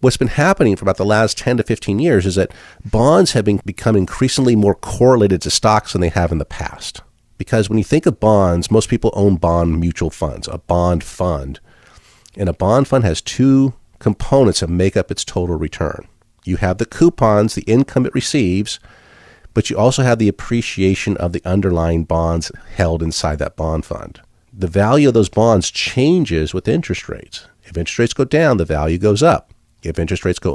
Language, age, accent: English, 50-69, American